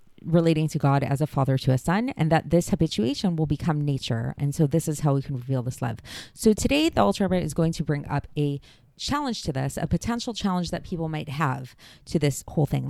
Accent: American